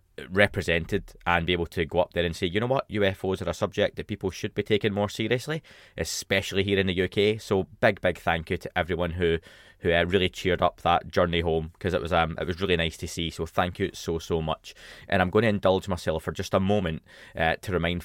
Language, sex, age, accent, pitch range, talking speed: English, male, 20-39, British, 85-105 Hz, 245 wpm